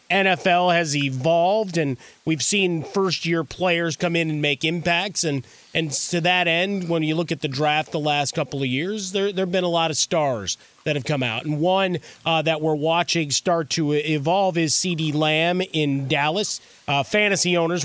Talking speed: 190 wpm